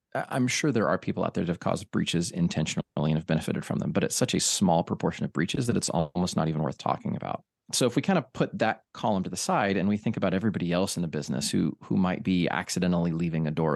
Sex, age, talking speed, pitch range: male, 30-49, 265 wpm, 85-105 Hz